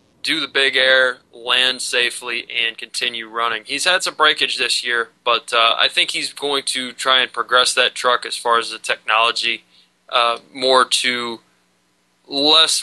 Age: 20-39